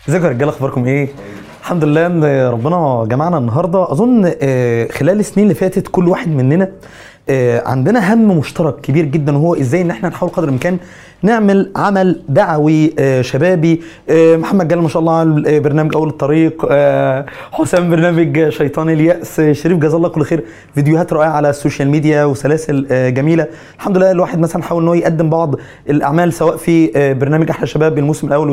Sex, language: male, Arabic